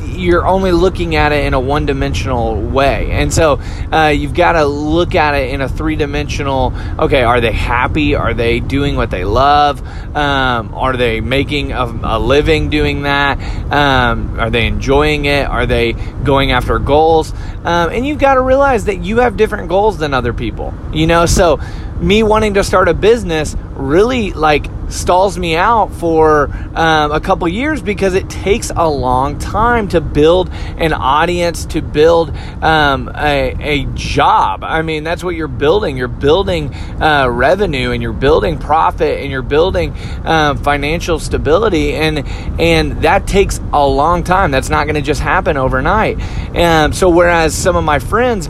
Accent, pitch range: American, 120-170 Hz